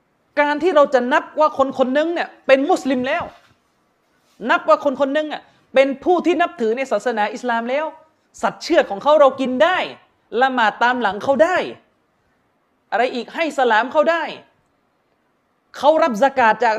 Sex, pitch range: male, 185-270 Hz